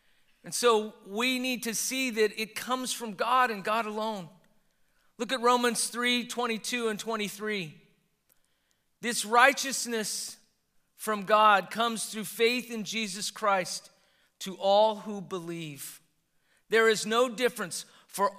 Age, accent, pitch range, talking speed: 40-59, American, 195-240 Hz, 135 wpm